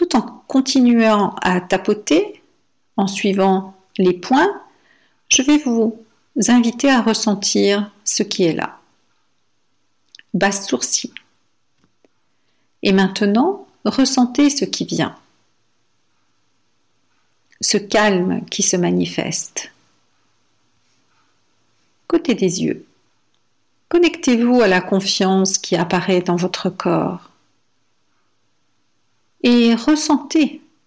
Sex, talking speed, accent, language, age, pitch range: female, 90 wpm, French, French, 50-69, 185-245 Hz